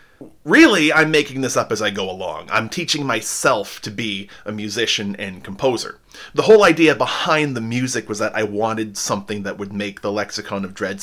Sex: male